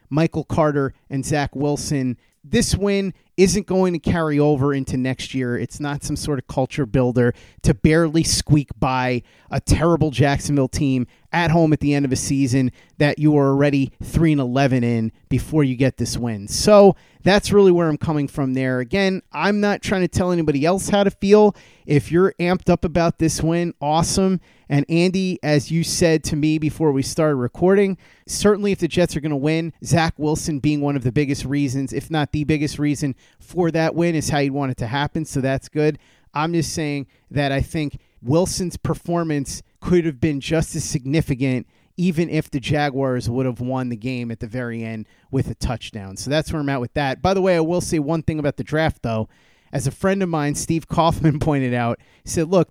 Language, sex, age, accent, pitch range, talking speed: English, male, 30-49, American, 135-165 Hz, 205 wpm